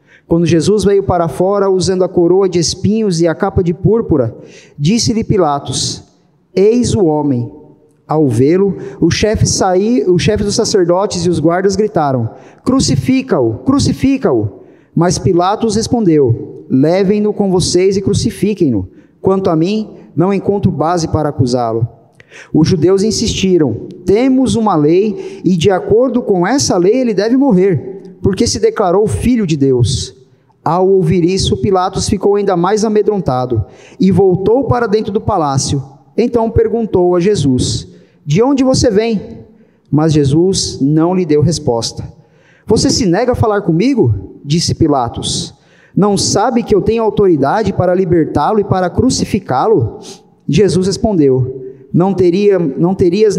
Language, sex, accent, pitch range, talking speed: Portuguese, male, Brazilian, 155-205 Hz, 135 wpm